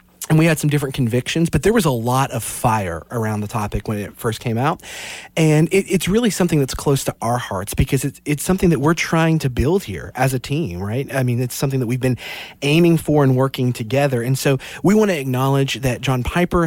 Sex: male